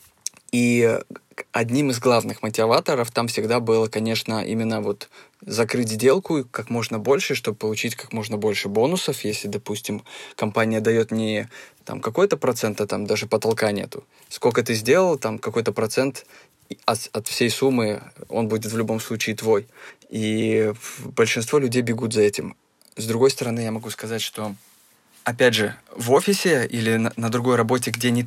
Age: 20-39